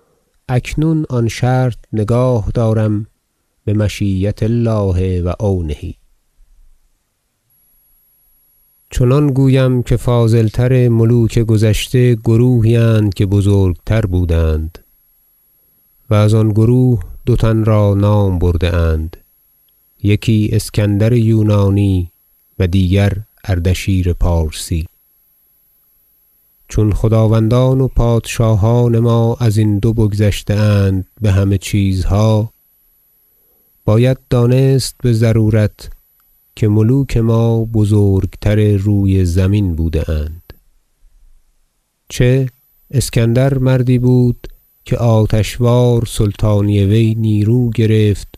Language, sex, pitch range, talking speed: Persian, male, 95-115 Hz, 90 wpm